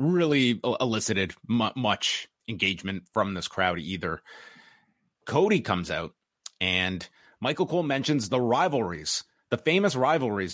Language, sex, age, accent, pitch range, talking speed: English, male, 30-49, American, 110-150 Hz, 115 wpm